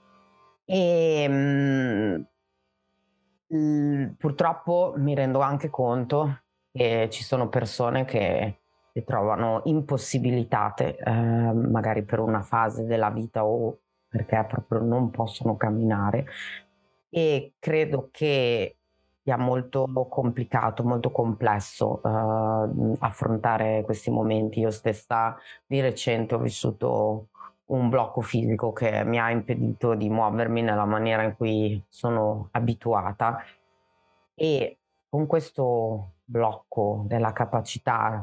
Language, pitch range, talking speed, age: Italian, 105-125 Hz, 105 wpm, 30-49